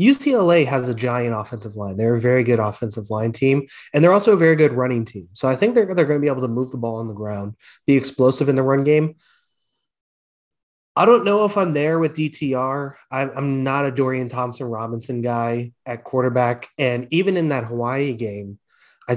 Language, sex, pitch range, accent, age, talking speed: English, male, 120-155 Hz, American, 20-39, 210 wpm